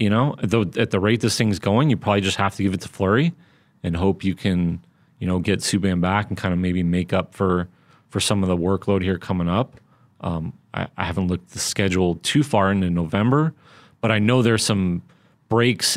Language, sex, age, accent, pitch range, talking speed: English, male, 30-49, American, 95-125 Hz, 225 wpm